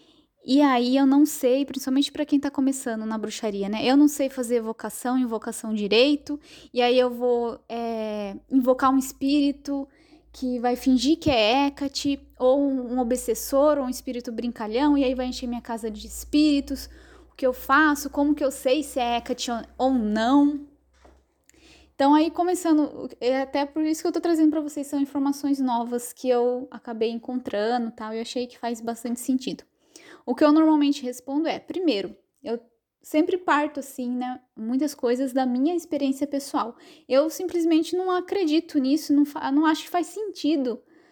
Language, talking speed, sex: Portuguese, 175 wpm, female